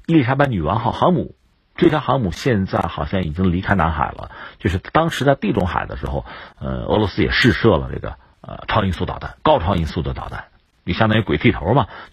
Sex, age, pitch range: male, 50-69, 85-125 Hz